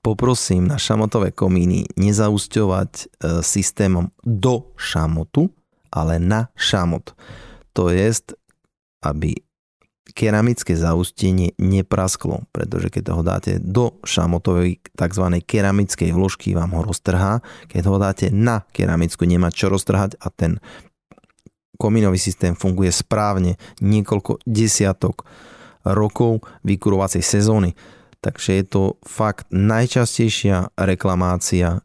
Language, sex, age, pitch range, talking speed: Slovak, male, 30-49, 90-110 Hz, 100 wpm